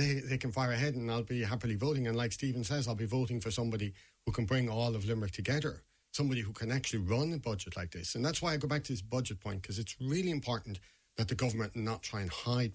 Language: English